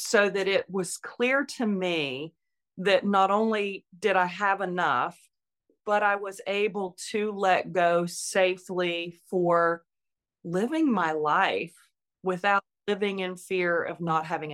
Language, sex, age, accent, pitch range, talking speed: English, female, 30-49, American, 170-205 Hz, 135 wpm